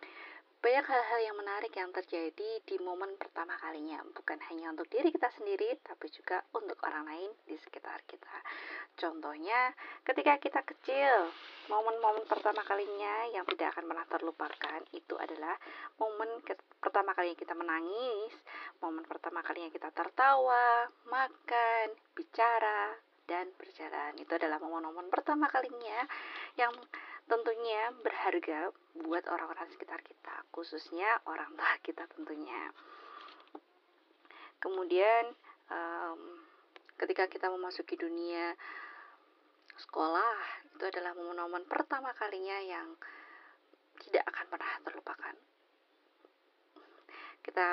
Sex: female